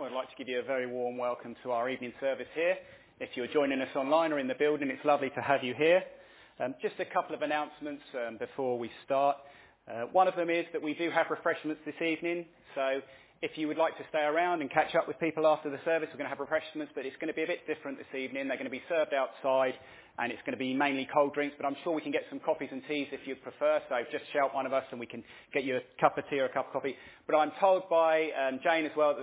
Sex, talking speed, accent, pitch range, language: male, 285 wpm, British, 130-160 Hz, English